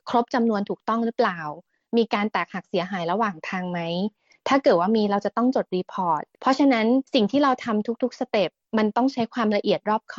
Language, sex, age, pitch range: Thai, female, 20-39, 190-235 Hz